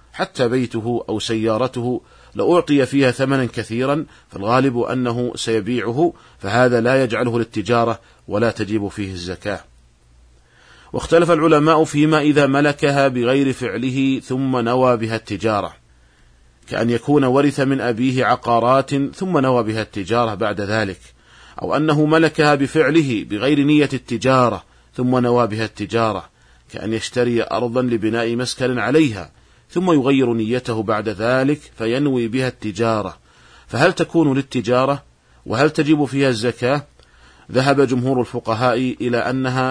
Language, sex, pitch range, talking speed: Arabic, male, 110-135 Hz, 120 wpm